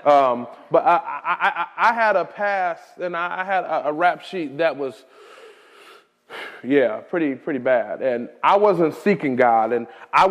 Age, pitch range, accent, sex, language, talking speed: 30-49, 140-210 Hz, American, male, English, 165 wpm